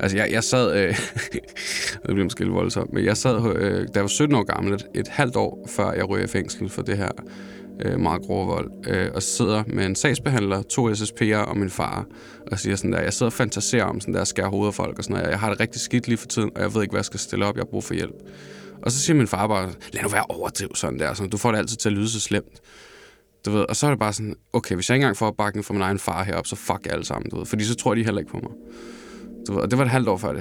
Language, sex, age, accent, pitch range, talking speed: Danish, male, 20-39, native, 100-135 Hz, 290 wpm